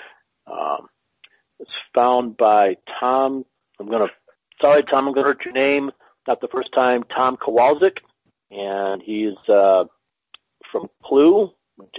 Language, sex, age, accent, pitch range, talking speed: English, male, 40-59, American, 105-155 Hz, 140 wpm